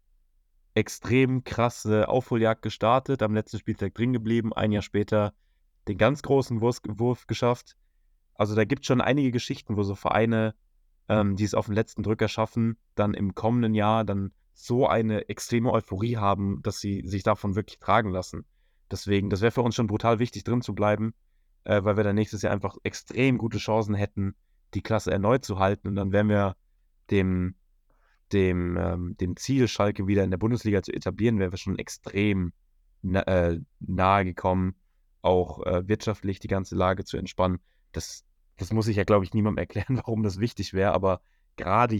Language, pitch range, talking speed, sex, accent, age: German, 90-110 Hz, 175 wpm, male, German, 20-39